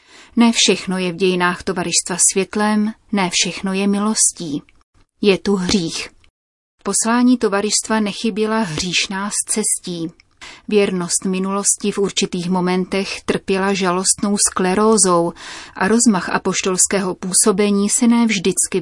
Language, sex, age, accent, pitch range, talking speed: Czech, female, 30-49, native, 180-215 Hz, 110 wpm